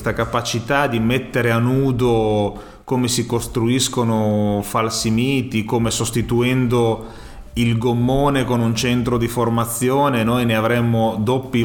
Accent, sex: native, male